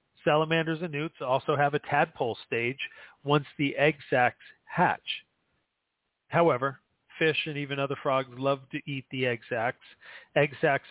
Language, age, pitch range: English, 40-59, 125-150 Hz